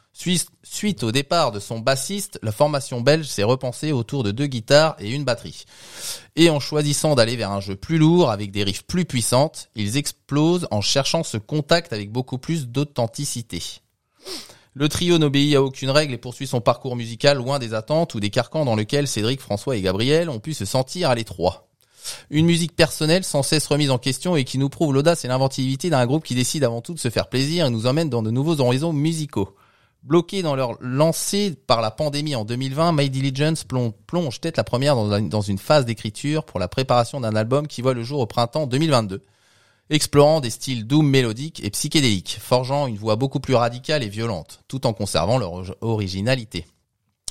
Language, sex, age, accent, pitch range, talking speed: French, male, 20-39, French, 115-150 Hz, 200 wpm